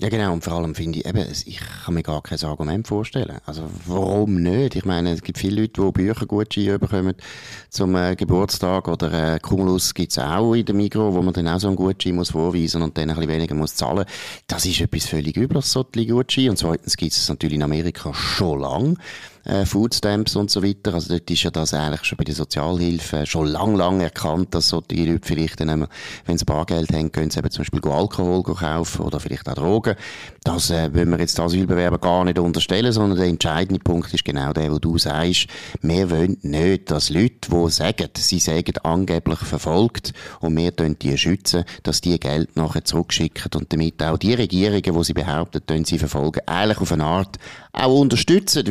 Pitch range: 80-100 Hz